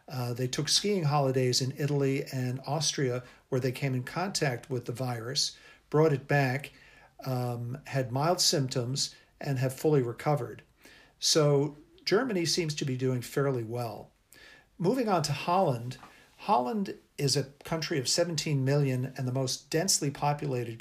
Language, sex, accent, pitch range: English, male, American, 130-150 Hz